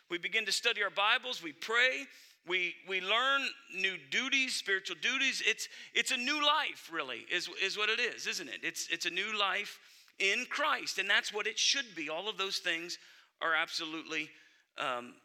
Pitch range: 190-260 Hz